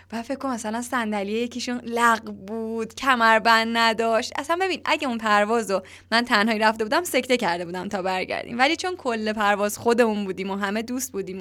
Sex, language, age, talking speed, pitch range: female, Persian, 10-29, 180 wpm, 210-295 Hz